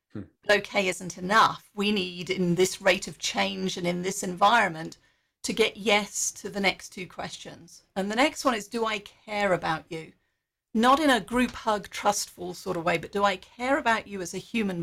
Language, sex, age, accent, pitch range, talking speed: English, female, 40-59, British, 180-225 Hz, 200 wpm